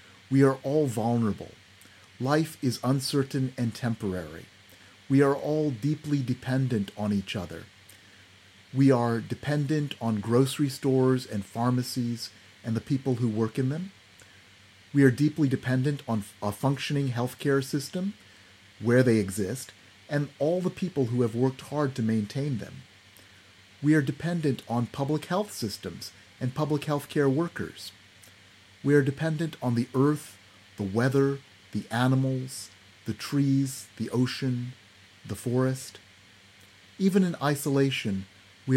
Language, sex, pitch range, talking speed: English, male, 100-140 Hz, 135 wpm